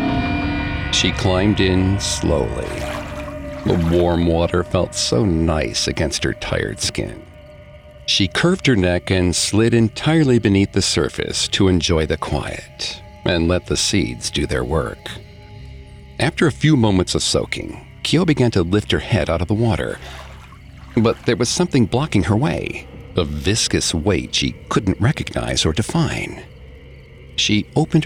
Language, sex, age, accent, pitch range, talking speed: English, male, 50-69, American, 85-115 Hz, 145 wpm